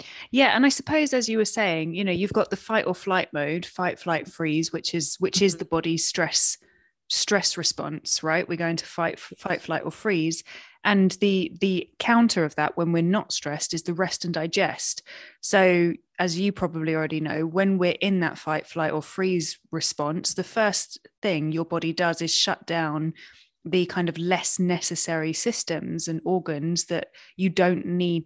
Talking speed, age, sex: 190 wpm, 20-39, female